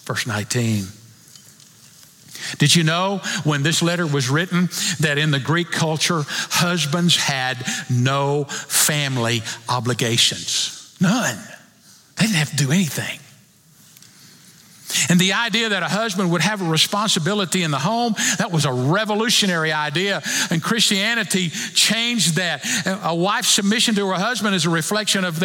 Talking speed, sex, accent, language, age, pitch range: 140 wpm, male, American, English, 50-69, 145-210 Hz